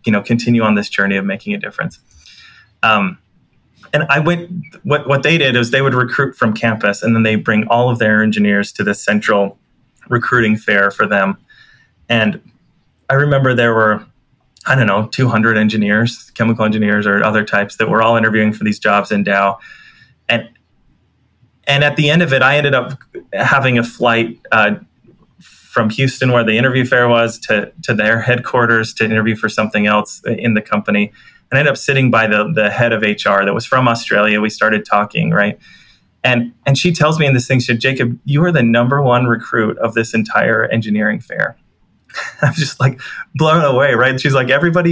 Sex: male